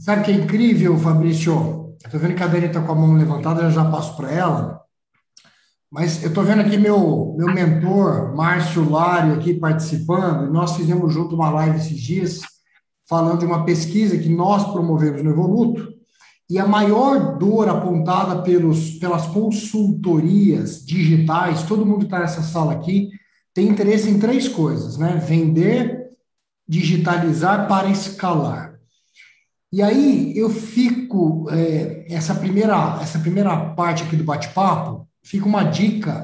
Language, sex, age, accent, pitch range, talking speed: Portuguese, male, 60-79, Brazilian, 165-205 Hz, 145 wpm